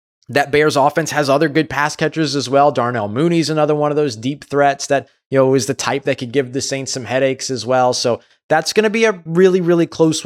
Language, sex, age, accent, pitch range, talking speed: English, male, 20-39, American, 105-145 Hz, 245 wpm